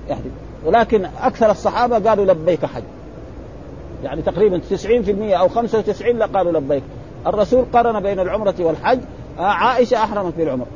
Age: 50-69